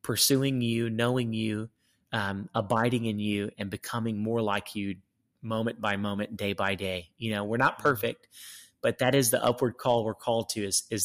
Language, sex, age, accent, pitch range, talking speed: English, male, 30-49, American, 105-130 Hz, 190 wpm